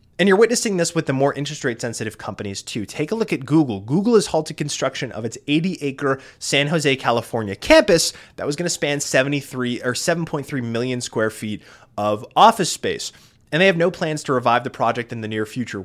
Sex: male